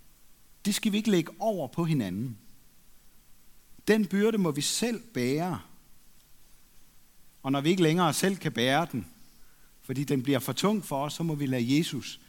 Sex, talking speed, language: male, 170 wpm, Danish